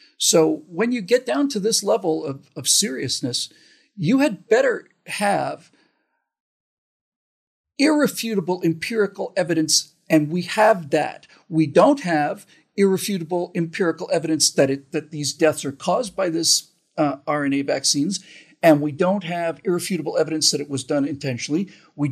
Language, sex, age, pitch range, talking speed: English, male, 50-69, 150-215 Hz, 140 wpm